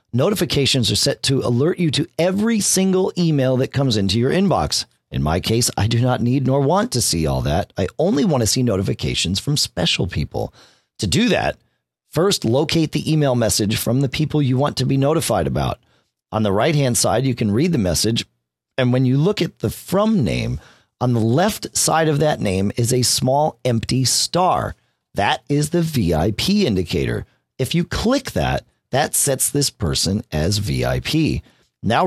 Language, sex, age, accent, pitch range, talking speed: English, male, 40-59, American, 95-150 Hz, 185 wpm